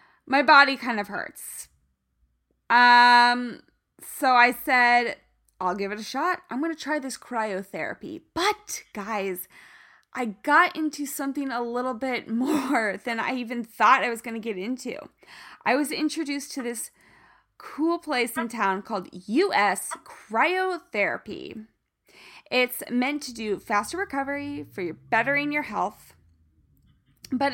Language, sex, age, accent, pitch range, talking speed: English, female, 10-29, American, 210-280 Hz, 135 wpm